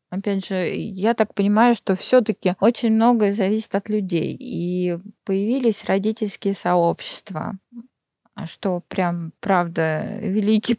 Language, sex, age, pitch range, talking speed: Russian, female, 20-39, 185-220 Hz, 110 wpm